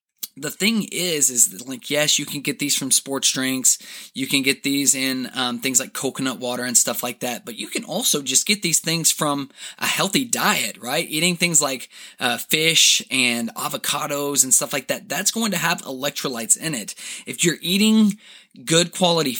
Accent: American